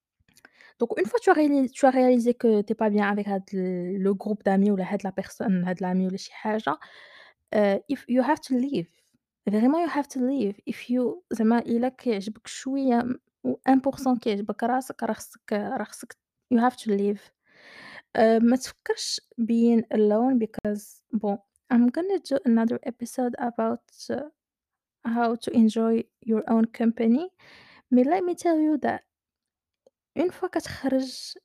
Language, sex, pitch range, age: English, female, 215-260 Hz, 20-39